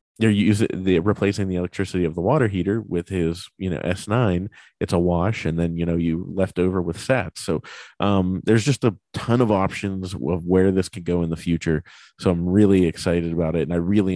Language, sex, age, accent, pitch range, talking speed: English, male, 30-49, American, 85-105 Hz, 225 wpm